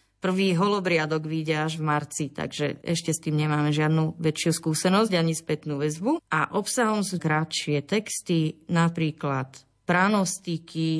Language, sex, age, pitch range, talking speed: Slovak, female, 30-49, 150-185 Hz, 130 wpm